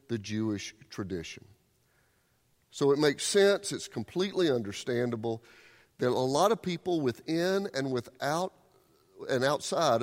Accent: American